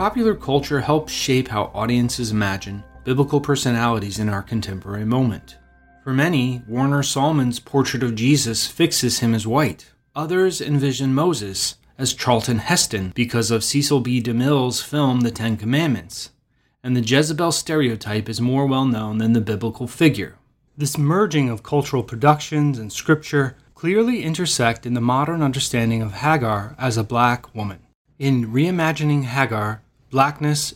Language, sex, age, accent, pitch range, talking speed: English, male, 30-49, American, 115-145 Hz, 145 wpm